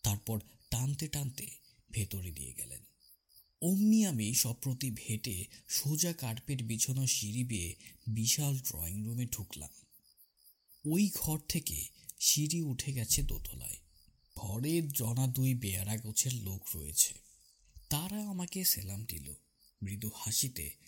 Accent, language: native, Bengali